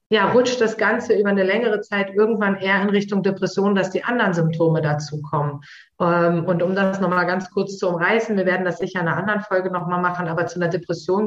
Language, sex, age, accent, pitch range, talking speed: German, female, 30-49, German, 170-195 Hz, 220 wpm